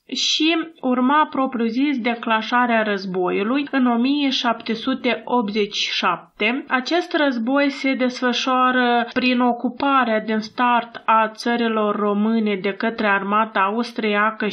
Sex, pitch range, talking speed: female, 220-260 Hz, 90 wpm